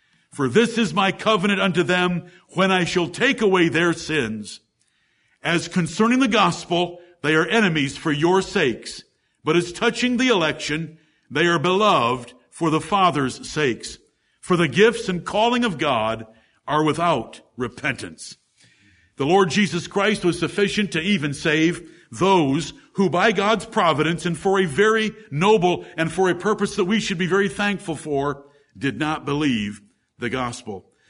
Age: 60-79